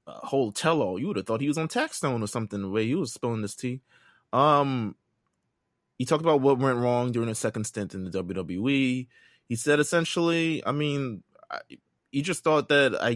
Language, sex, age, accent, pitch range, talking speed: English, male, 20-39, American, 105-130 Hz, 210 wpm